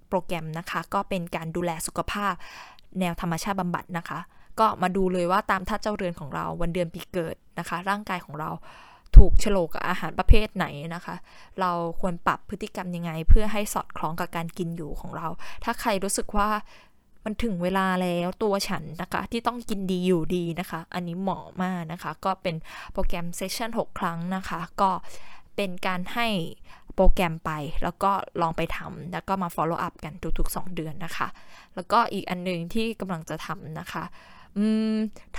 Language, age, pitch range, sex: Thai, 10-29, 170-205 Hz, female